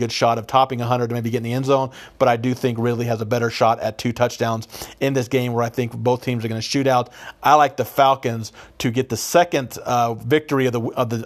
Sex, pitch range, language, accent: male, 120-135 Hz, English, American